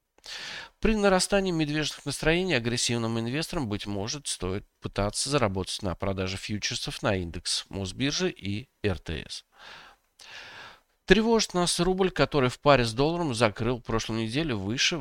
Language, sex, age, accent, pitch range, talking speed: Russian, male, 40-59, native, 95-155 Hz, 125 wpm